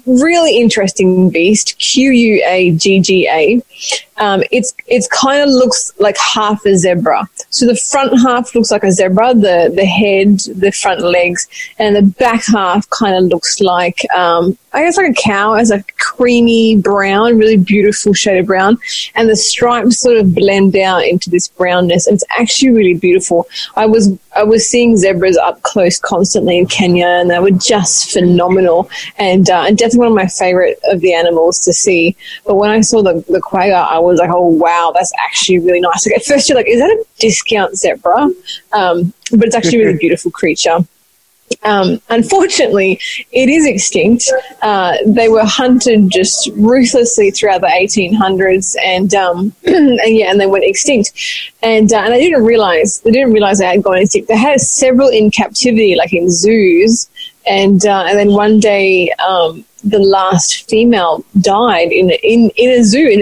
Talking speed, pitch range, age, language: 185 wpm, 185-235 Hz, 20-39, English